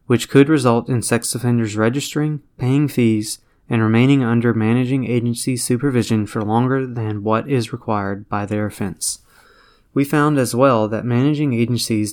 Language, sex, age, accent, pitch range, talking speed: English, male, 20-39, American, 110-130 Hz, 155 wpm